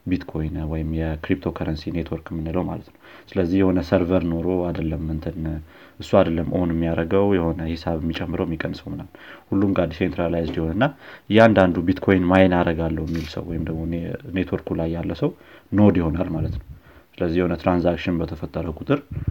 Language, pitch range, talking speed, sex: Amharic, 80-95 Hz, 150 wpm, male